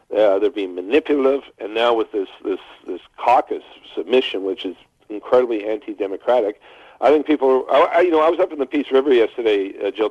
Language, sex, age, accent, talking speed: English, male, 50-69, American, 195 wpm